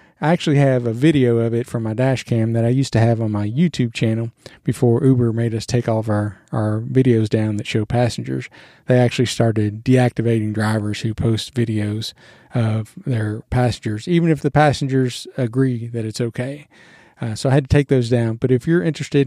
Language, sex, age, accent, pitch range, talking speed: English, male, 40-59, American, 115-135 Hz, 200 wpm